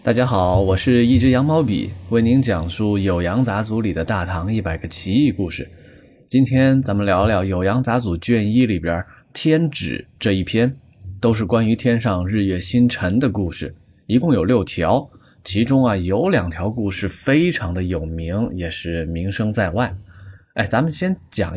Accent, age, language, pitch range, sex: native, 20-39, Chinese, 90-120 Hz, male